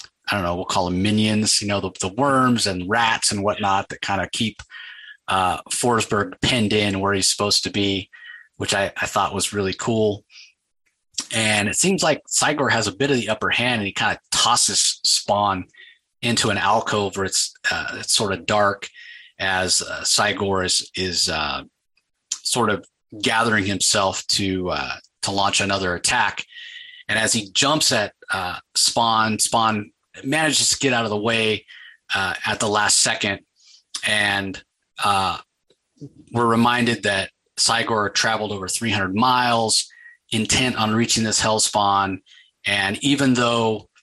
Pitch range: 100-125 Hz